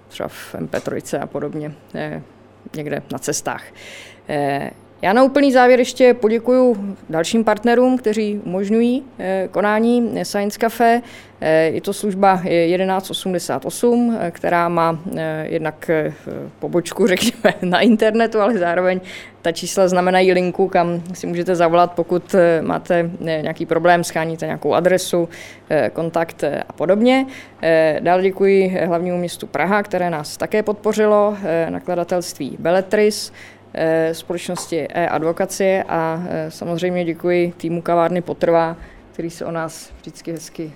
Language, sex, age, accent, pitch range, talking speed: Czech, female, 20-39, native, 165-215 Hz, 115 wpm